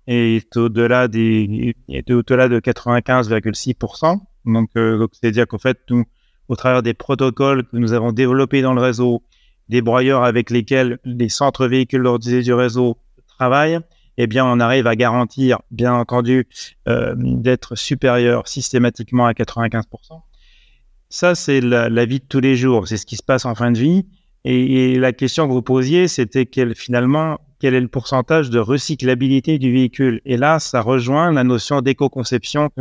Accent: French